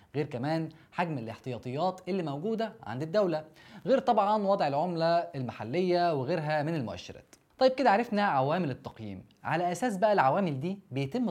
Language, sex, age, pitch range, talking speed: Arabic, male, 20-39, 135-185 Hz, 145 wpm